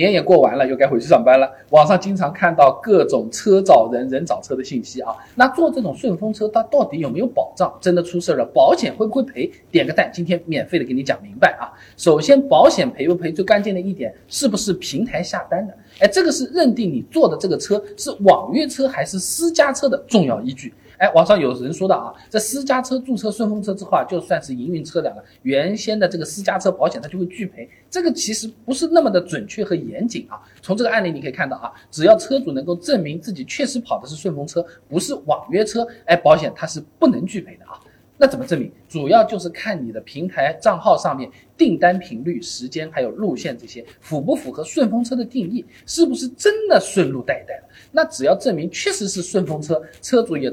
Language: Chinese